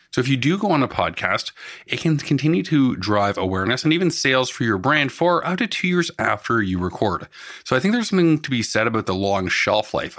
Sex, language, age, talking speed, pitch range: male, English, 30-49, 240 wpm, 105-150 Hz